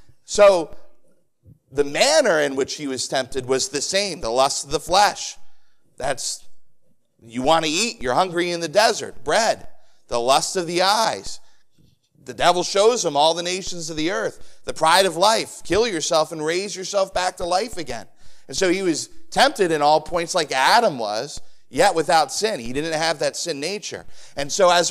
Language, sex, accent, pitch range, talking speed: English, male, American, 145-190 Hz, 190 wpm